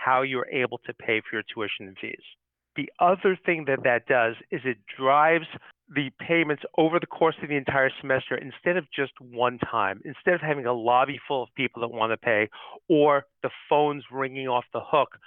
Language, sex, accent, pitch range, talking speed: English, male, American, 115-145 Hz, 205 wpm